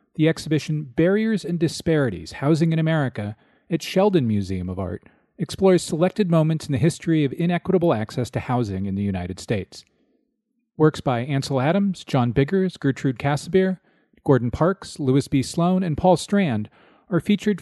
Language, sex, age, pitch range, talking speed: English, male, 40-59, 120-170 Hz, 155 wpm